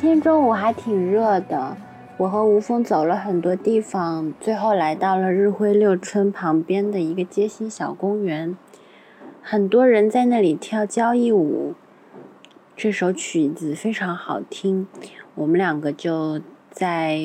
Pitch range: 170-215 Hz